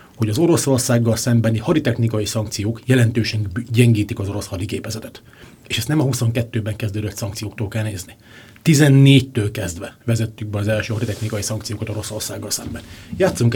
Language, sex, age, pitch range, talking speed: Hungarian, male, 30-49, 105-120 Hz, 135 wpm